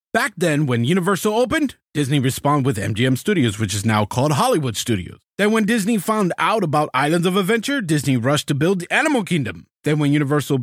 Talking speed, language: 200 wpm, English